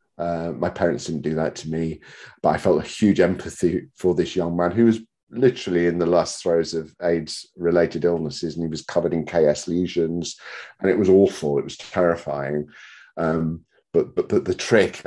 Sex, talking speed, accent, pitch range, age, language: male, 190 wpm, British, 85-105 Hz, 40-59, English